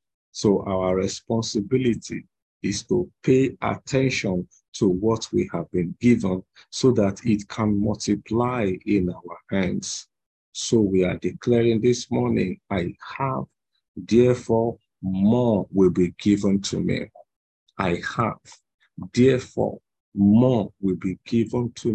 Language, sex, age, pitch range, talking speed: English, male, 50-69, 100-120 Hz, 120 wpm